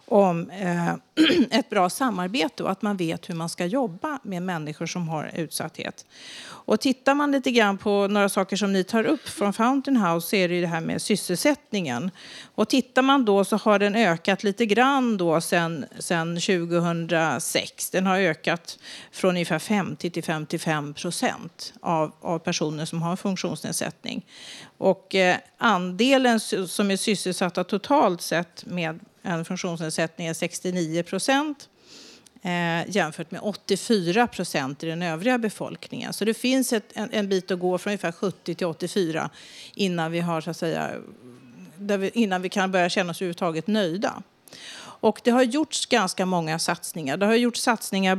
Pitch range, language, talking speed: 170-220 Hz, Swedish, 165 wpm